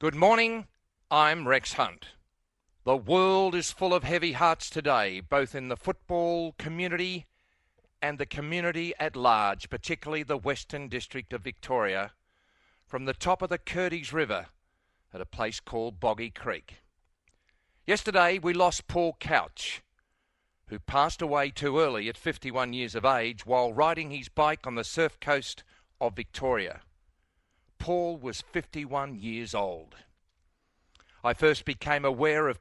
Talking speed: 140 wpm